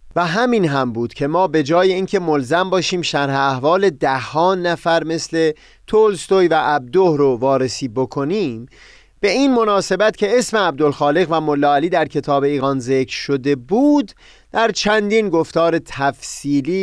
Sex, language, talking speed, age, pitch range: male, Persian, 145 wpm, 30-49, 135-185 Hz